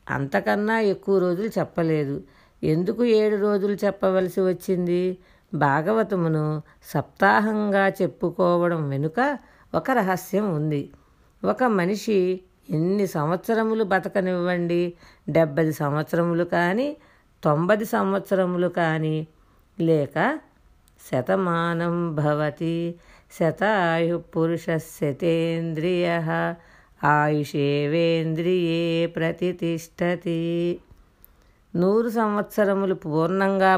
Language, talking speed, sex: Telugu, 70 wpm, female